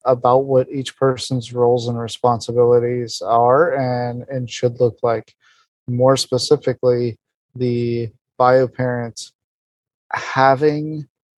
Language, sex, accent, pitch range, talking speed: English, male, American, 120-135 Hz, 100 wpm